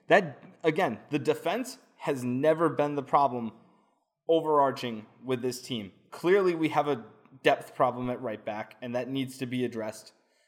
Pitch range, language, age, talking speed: 120-145 Hz, English, 20-39, 160 wpm